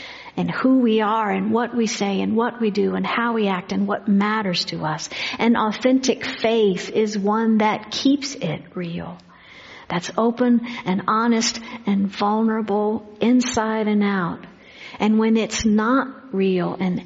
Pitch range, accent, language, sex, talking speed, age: 190-230 Hz, American, English, female, 160 wpm, 60-79